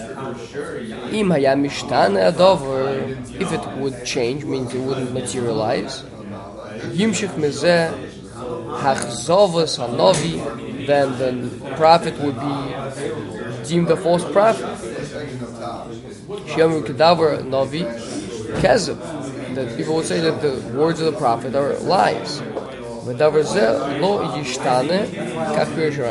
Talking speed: 70 wpm